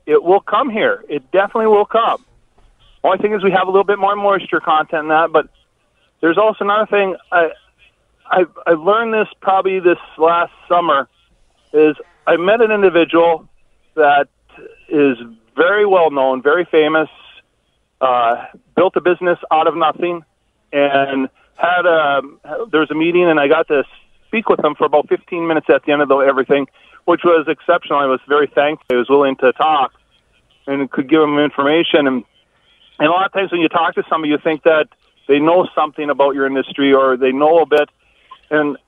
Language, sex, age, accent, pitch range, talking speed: English, male, 40-59, American, 140-175 Hz, 185 wpm